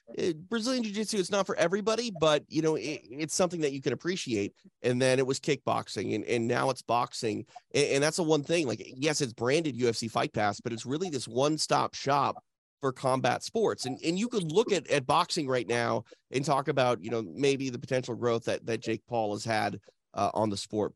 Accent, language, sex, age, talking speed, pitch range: American, English, male, 30-49, 220 wpm, 120-155 Hz